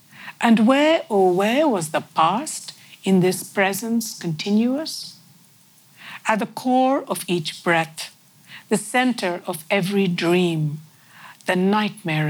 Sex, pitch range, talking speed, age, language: female, 165-225 Hz, 115 wpm, 60-79, English